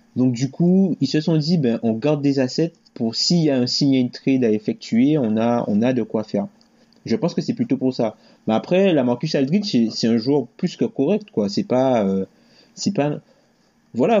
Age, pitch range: 30-49, 115-170 Hz